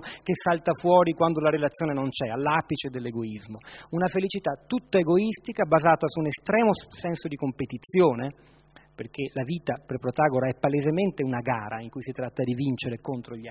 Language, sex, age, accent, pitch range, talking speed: Italian, male, 40-59, native, 130-165 Hz, 170 wpm